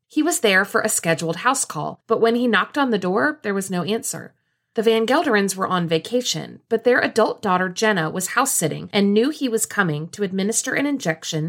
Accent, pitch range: American, 170-235 Hz